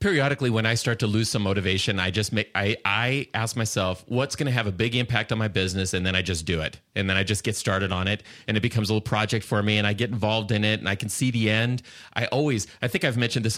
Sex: male